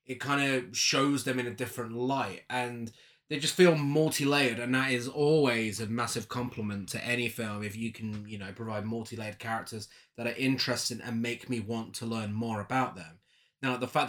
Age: 20-39